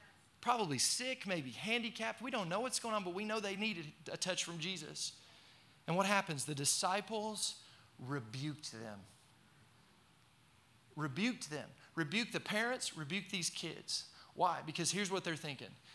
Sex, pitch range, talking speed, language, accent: male, 145-185 Hz, 150 wpm, English, American